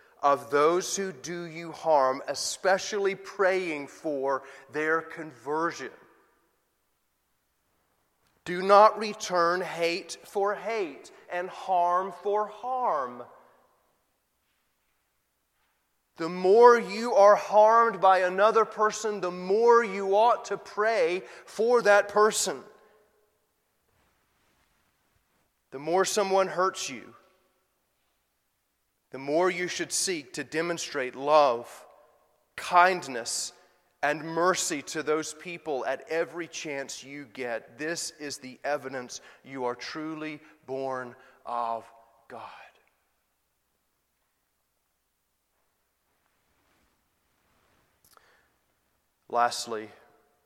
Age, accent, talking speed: 30-49, American, 85 wpm